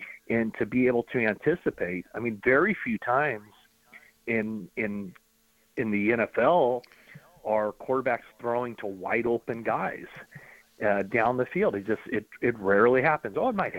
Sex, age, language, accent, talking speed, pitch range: male, 40-59, English, American, 150 wpm, 110-130 Hz